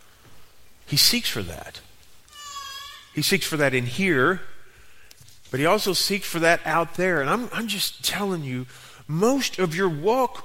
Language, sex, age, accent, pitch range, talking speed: English, male, 40-59, American, 175-270 Hz, 160 wpm